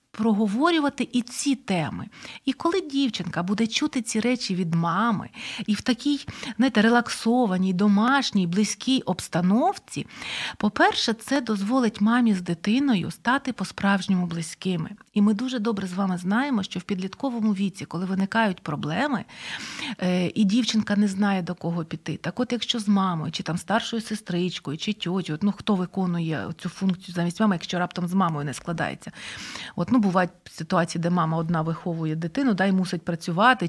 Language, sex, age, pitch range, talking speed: Ukrainian, female, 30-49, 180-230 Hz, 155 wpm